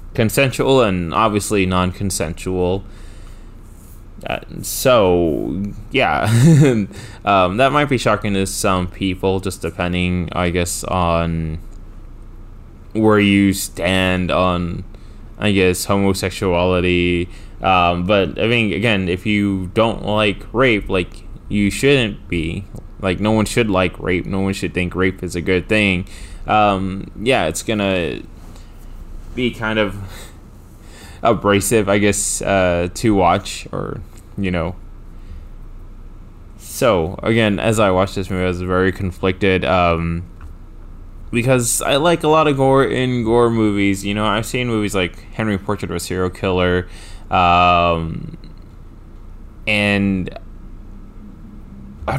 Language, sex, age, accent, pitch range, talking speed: English, male, 10-29, American, 90-105 Hz, 125 wpm